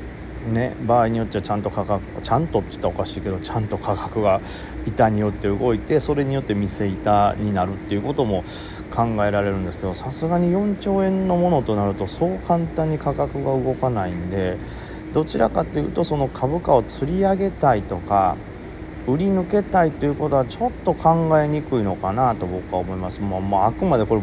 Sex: male